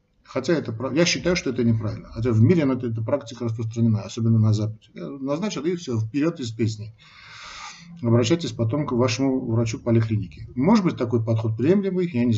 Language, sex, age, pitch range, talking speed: Russian, male, 50-69, 110-135 Hz, 175 wpm